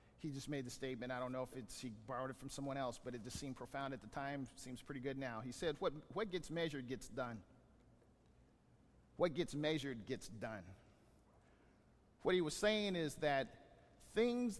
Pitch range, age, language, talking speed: 130-190 Hz, 40-59, English, 195 wpm